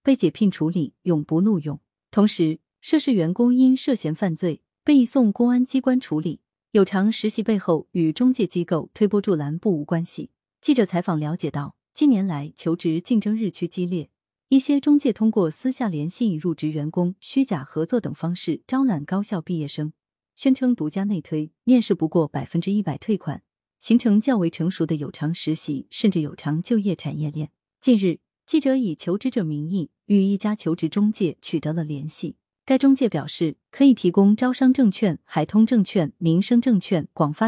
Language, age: Chinese, 30-49